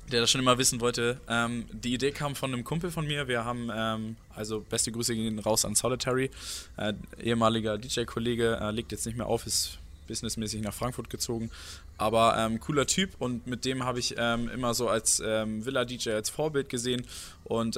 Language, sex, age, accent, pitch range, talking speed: German, male, 20-39, German, 105-120 Hz, 195 wpm